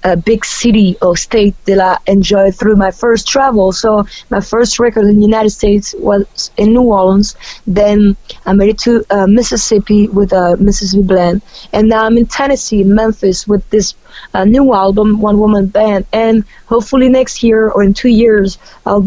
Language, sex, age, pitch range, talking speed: English, female, 20-39, 195-230 Hz, 185 wpm